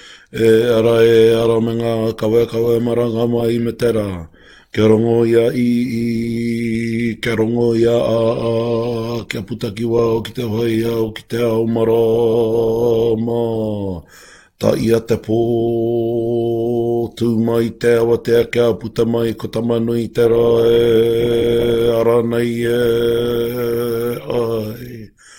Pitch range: 115-120 Hz